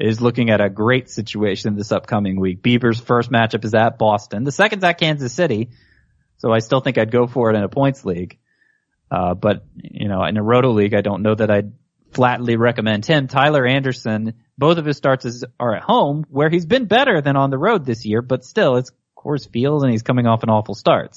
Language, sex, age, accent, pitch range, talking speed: English, male, 20-39, American, 110-140 Hz, 225 wpm